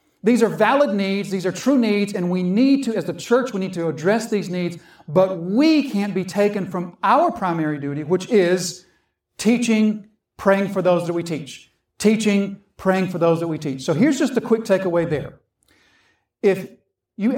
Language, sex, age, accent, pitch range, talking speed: English, male, 40-59, American, 165-215 Hz, 190 wpm